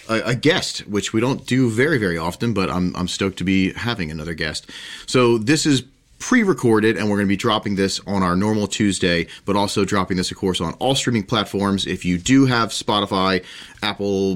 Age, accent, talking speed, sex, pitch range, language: 30-49, American, 205 wpm, male, 90-120 Hz, English